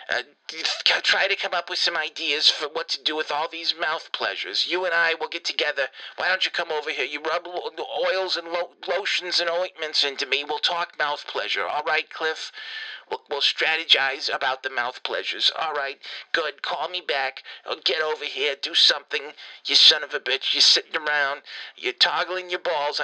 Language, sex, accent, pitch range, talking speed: English, male, American, 155-180 Hz, 200 wpm